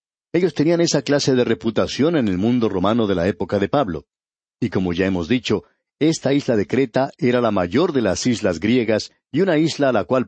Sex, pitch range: male, 100-140 Hz